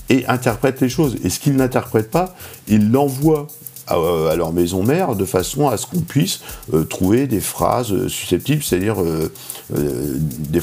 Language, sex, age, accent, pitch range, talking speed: French, male, 50-69, French, 95-140 Hz, 170 wpm